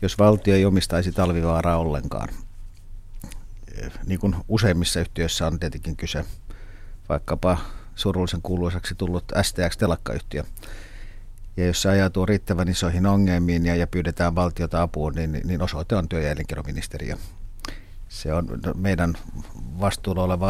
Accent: native